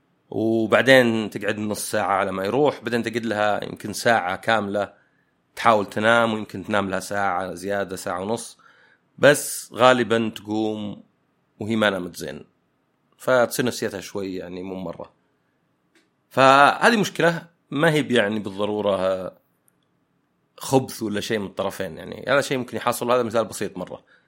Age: 30-49